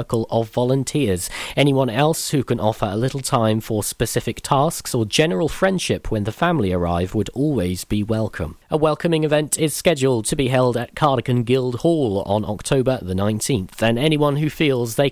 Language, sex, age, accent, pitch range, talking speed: English, male, 40-59, British, 105-145 Hz, 180 wpm